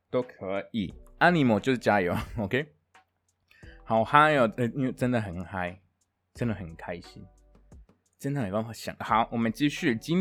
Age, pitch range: 20-39, 100-160 Hz